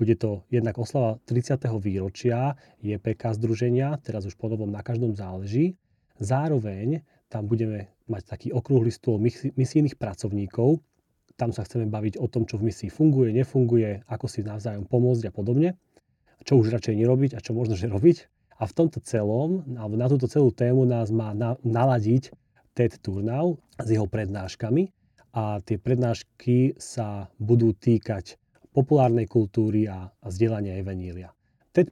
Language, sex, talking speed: Slovak, male, 150 wpm